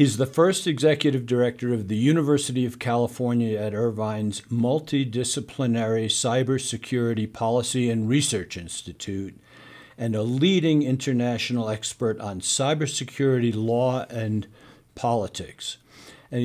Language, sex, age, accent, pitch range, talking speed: English, male, 60-79, American, 110-135 Hz, 105 wpm